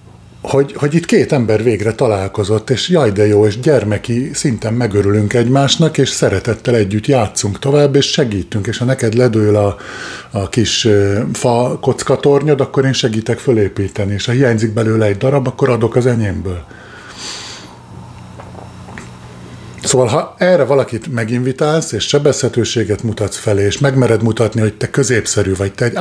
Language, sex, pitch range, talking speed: Hungarian, male, 105-130 Hz, 150 wpm